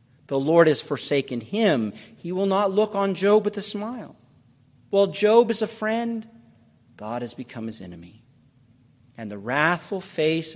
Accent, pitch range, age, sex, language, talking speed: American, 120-175 Hz, 50-69, male, English, 160 wpm